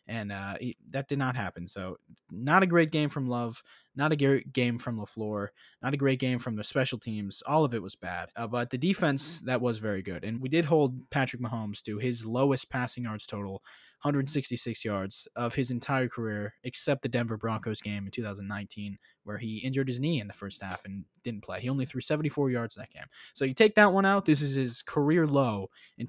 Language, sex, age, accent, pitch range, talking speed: English, male, 20-39, American, 110-145 Hz, 220 wpm